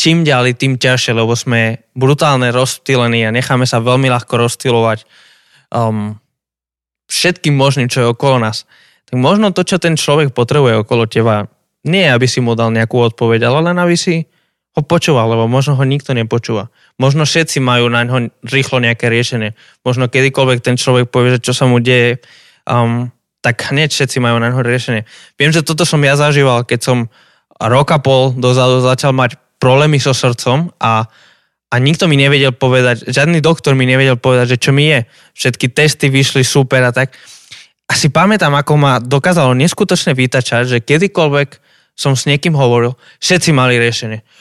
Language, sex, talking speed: Slovak, male, 175 wpm